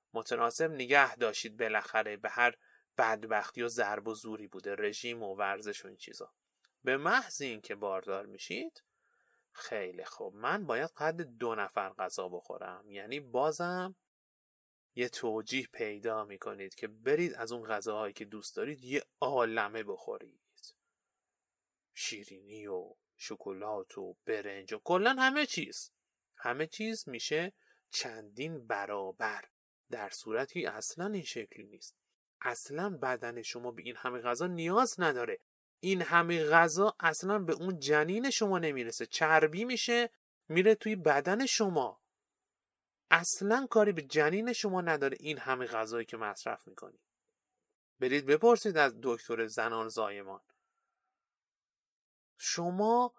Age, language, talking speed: 30-49, Persian, 125 wpm